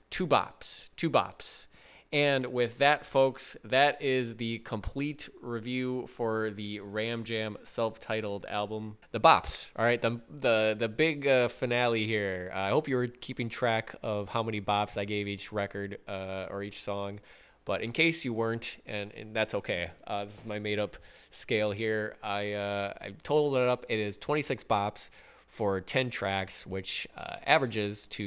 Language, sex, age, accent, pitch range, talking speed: English, male, 20-39, American, 100-125 Hz, 175 wpm